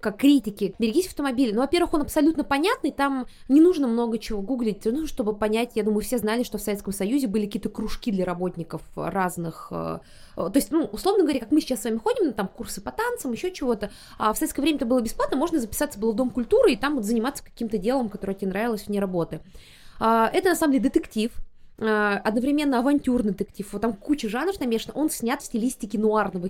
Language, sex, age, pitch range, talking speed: Russian, female, 20-39, 210-275 Hz, 205 wpm